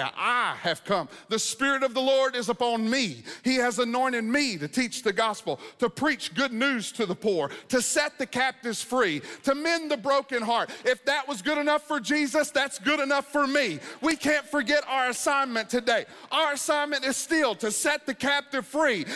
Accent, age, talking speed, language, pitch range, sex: American, 40-59, 195 wpm, English, 225-280 Hz, male